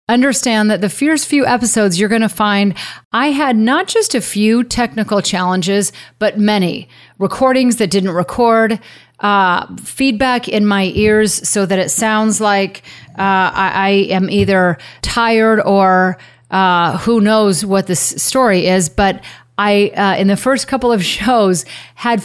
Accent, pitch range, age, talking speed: American, 190-225 Hz, 30-49, 155 wpm